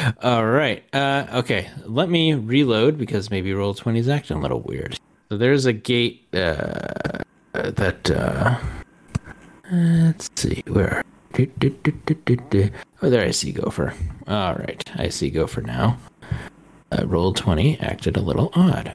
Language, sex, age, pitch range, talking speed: English, male, 30-49, 100-140 Hz, 130 wpm